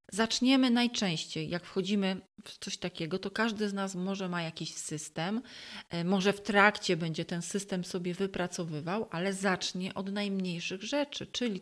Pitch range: 175-210 Hz